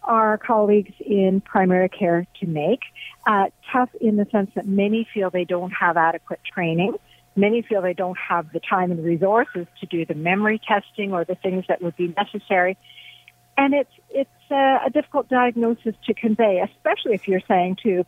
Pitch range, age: 185-235 Hz, 50-69